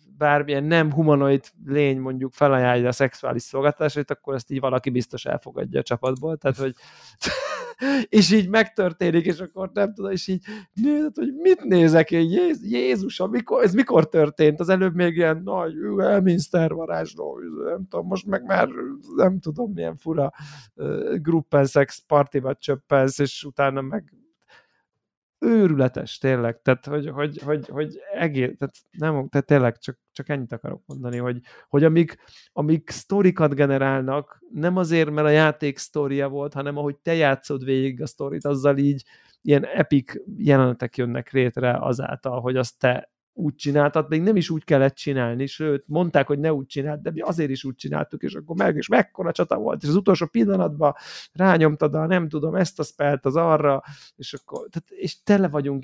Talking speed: 165 wpm